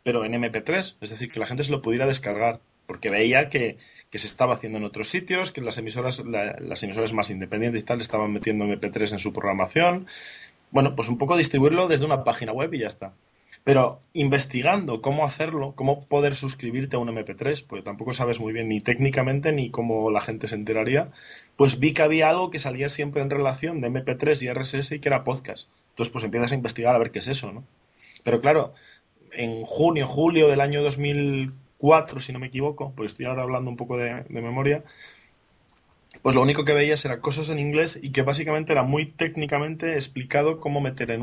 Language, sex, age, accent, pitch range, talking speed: Spanish, male, 20-39, Spanish, 115-145 Hz, 205 wpm